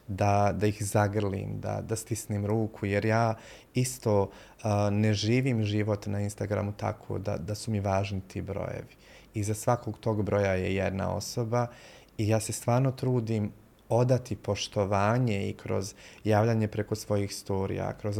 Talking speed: 150 wpm